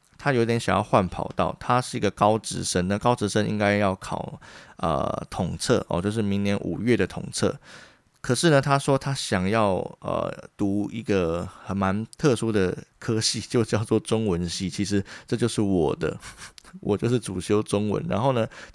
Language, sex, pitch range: Chinese, male, 95-120 Hz